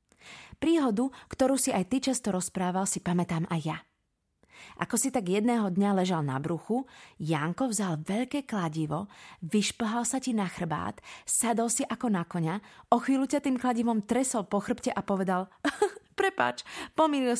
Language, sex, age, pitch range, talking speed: Slovak, female, 30-49, 180-235 Hz, 160 wpm